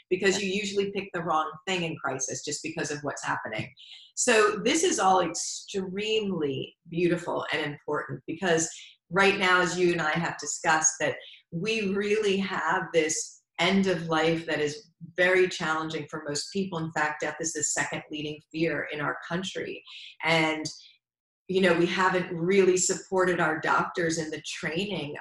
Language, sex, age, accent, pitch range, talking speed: English, female, 40-59, American, 160-195 Hz, 165 wpm